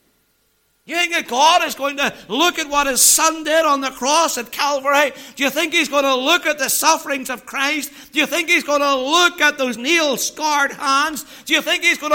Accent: American